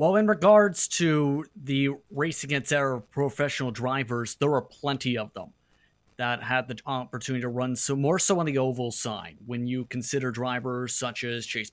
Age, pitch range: 30-49, 125-155 Hz